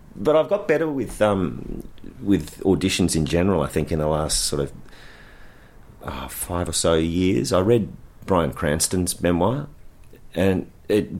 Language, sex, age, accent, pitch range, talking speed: English, male, 30-49, Australian, 75-105 Hz, 155 wpm